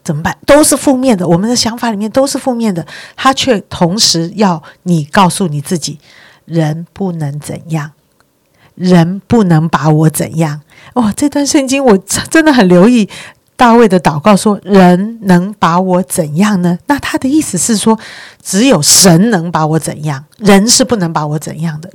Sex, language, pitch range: female, Chinese, 165-215 Hz